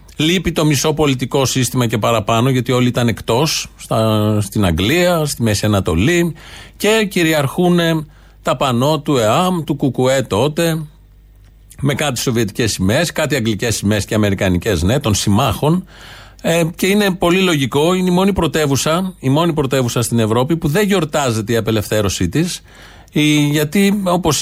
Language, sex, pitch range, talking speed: Greek, male, 115-180 Hz, 145 wpm